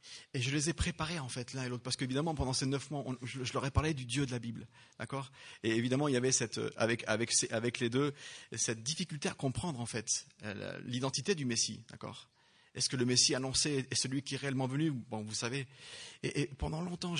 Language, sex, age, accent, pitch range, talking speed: English, male, 30-49, French, 120-150 Hz, 235 wpm